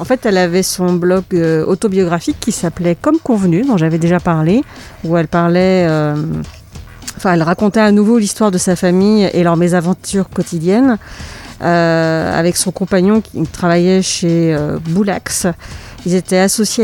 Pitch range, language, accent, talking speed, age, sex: 170-205 Hz, French, French, 155 wpm, 40-59, female